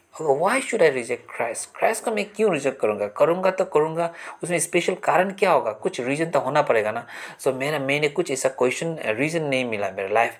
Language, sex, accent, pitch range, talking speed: English, male, Indian, 130-180 Hz, 200 wpm